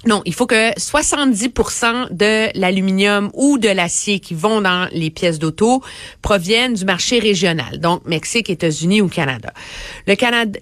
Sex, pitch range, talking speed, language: female, 175-235 Hz, 145 wpm, French